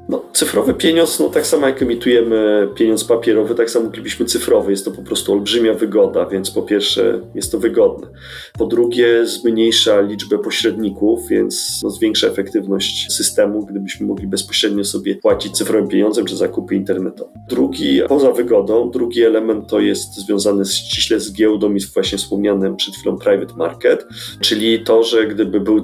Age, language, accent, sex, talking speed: 30-49, Polish, native, male, 165 wpm